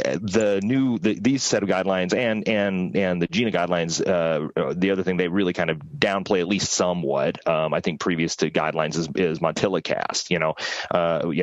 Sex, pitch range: male, 80-95 Hz